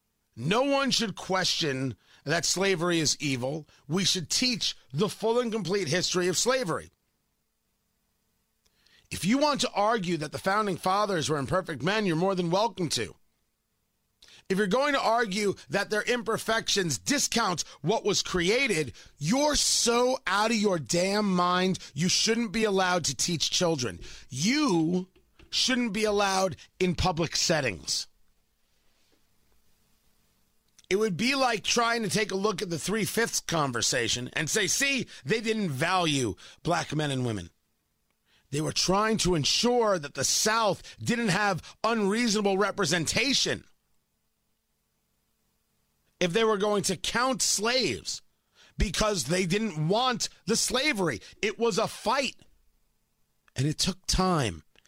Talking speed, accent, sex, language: 135 wpm, American, male, English